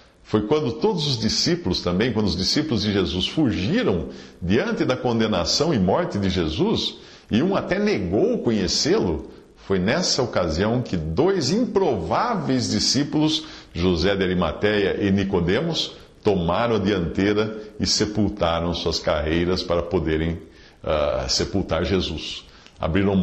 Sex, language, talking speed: male, English, 125 wpm